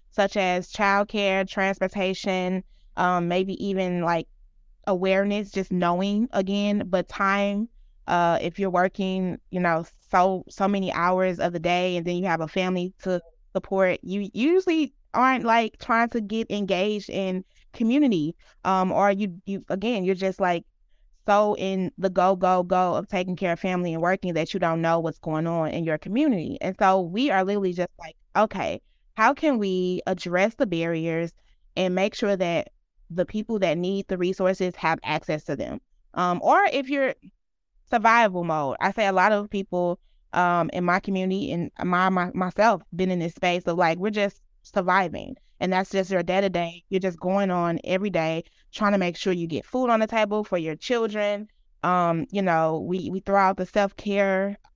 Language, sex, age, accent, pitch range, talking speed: English, female, 20-39, American, 180-200 Hz, 185 wpm